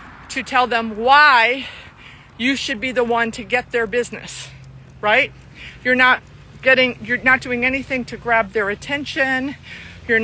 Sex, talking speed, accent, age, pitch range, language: female, 150 wpm, American, 50-69, 200-250 Hz, English